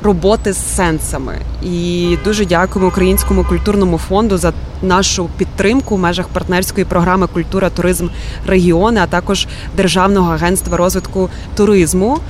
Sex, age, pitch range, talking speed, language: female, 20-39, 180-215 Hz, 120 wpm, Ukrainian